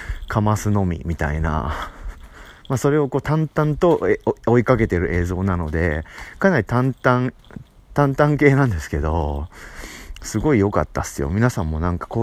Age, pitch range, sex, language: 30-49, 85-125 Hz, male, Japanese